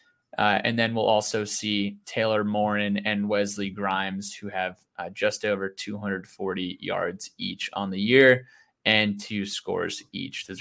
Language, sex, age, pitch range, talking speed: English, male, 20-39, 105-125 Hz, 155 wpm